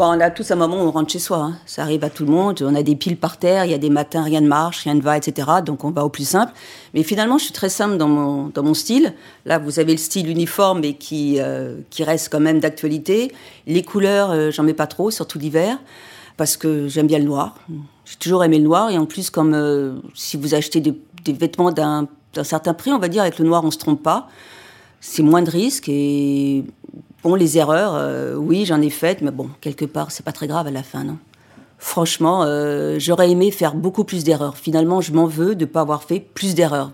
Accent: French